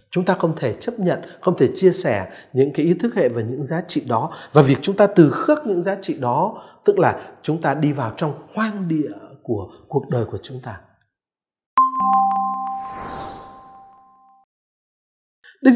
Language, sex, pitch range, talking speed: Vietnamese, male, 140-225 Hz, 175 wpm